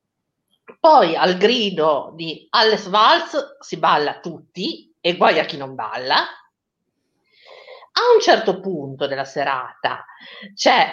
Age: 50-69